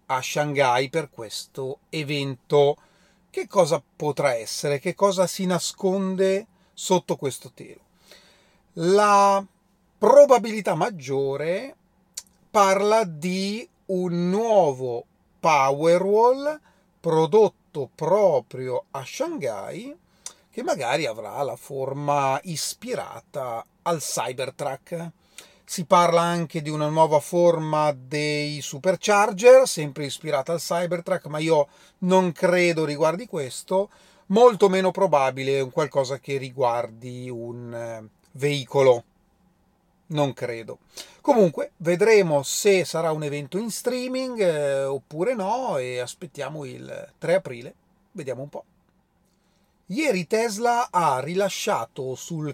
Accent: native